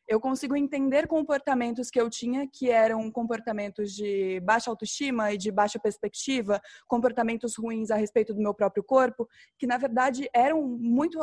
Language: Portuguese